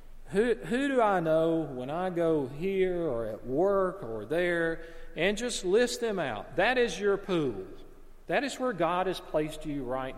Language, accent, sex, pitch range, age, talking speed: English, American, male, 135-195 Hz, 40-59, 185 wpm